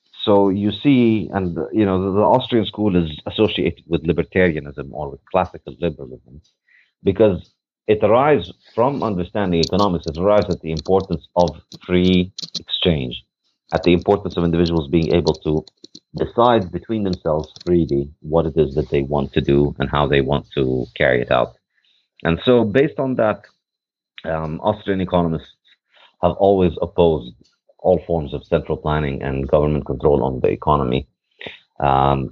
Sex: male